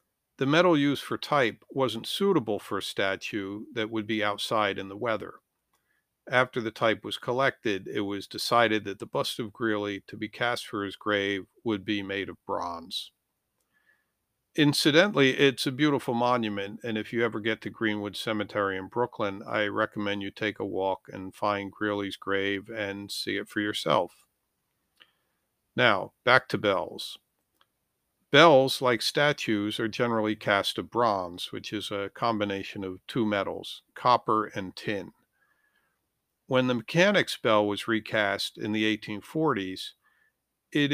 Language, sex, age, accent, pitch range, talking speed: English, male, 50-69, American, 100-125 Hz, 150 wpm